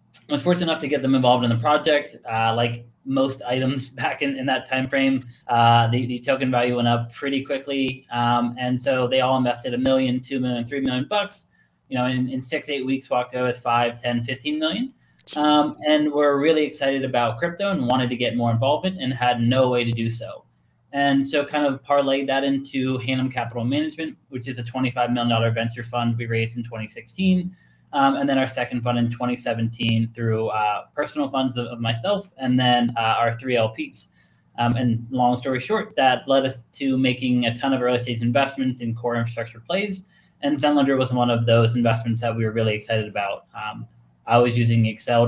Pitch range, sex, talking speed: 115-135 Hz, male, 210 wpm